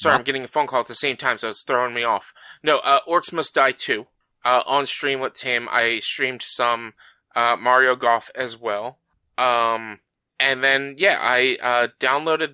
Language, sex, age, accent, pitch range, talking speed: English, male, 20-39, American, 120-150 Hz, 195 wpm